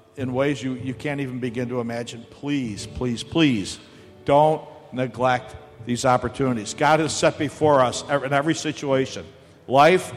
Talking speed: 150 wpm